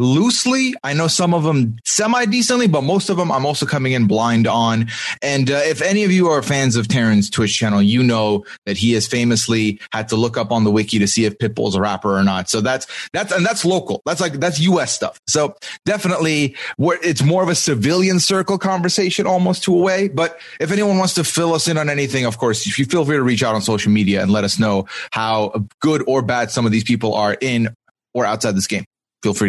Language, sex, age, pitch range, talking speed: English, male, 30-49, 115-175 Hz, 240 wpm